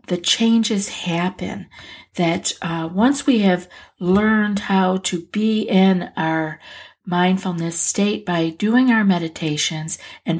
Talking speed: 120 wpm